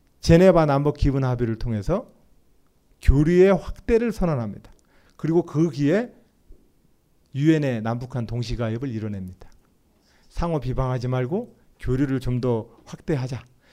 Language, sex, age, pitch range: Korean, male, 40-59, 115-185 Hz